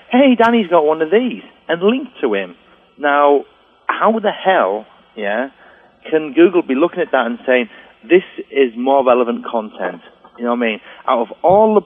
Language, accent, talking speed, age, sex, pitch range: English, British, 180 wpm, 40-59, male, 115-170 Hz